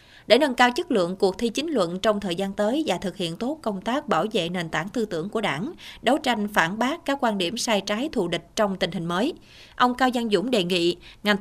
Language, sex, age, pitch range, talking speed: Vietnamese, female, 20-39, 185-245 Hz, 260 wpm